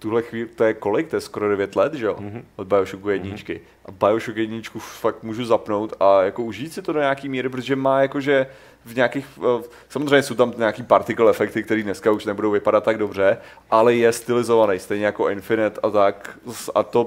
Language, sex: Czech, male